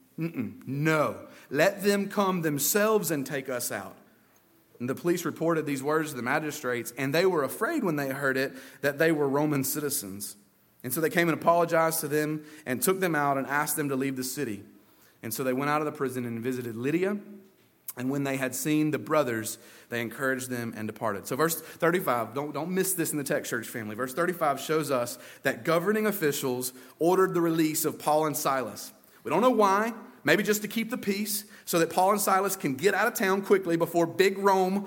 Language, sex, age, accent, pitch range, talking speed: English, male, 30-49, American, 140-185 Hz, 215 wpm